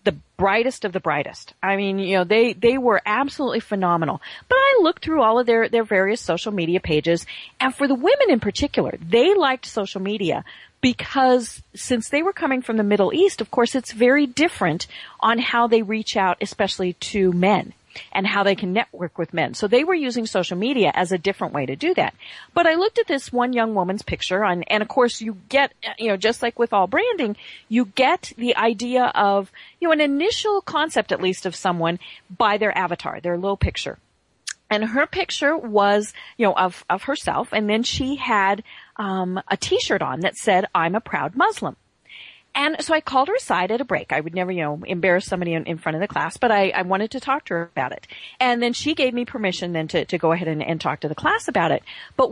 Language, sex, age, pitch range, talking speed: English, female, 40-59, 185-260 Hz, 225 wpm